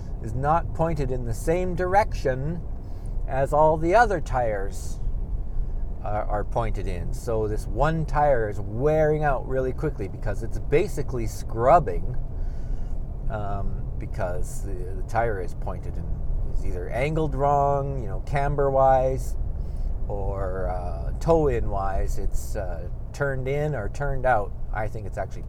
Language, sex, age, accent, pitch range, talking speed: English, male, 50-69, American, 105-140 Hz, 140 wpm